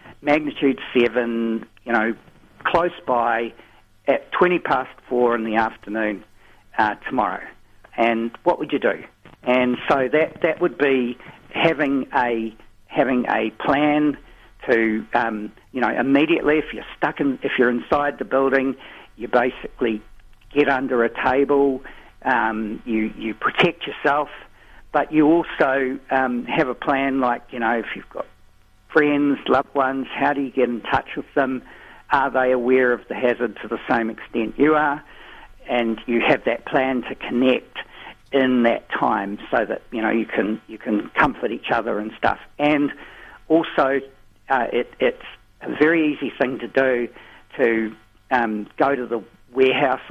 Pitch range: 115-140 Hz